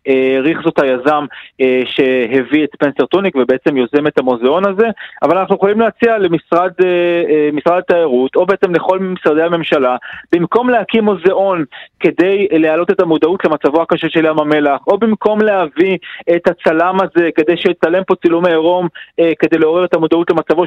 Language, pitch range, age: Hebrew, 150-190 Hz, 30-49